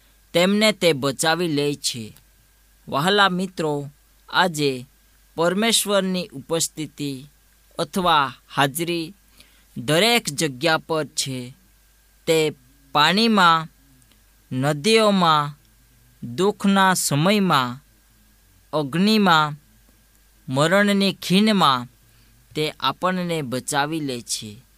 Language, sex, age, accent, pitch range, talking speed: Gujarati, female, 20-39, native, 135-180 Hz, 65 wpm